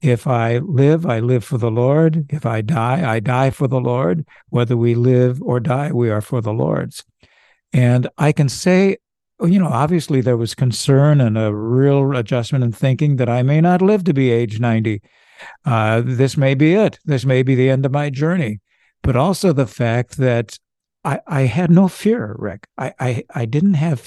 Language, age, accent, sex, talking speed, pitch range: English, 60-79, American, male, 200 wpm, 120-150 Hz